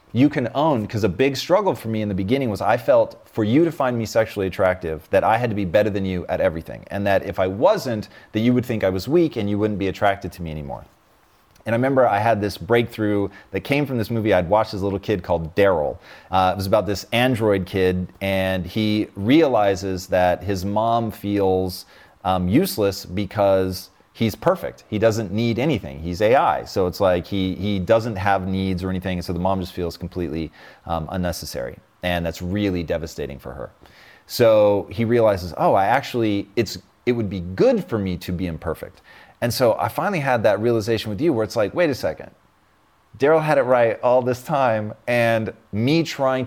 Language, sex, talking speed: English, male, 210 wpm